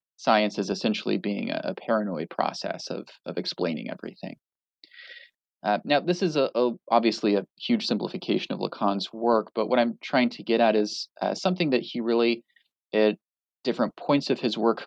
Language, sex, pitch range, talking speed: English, male, 110-130 Hz, 180 wpm